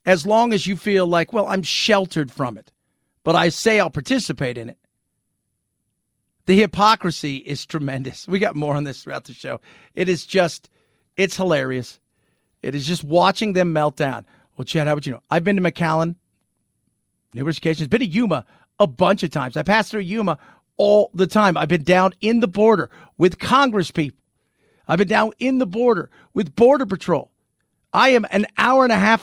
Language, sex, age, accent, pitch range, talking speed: English, male, 50-69, American, 150-210 Hz, 190 wpm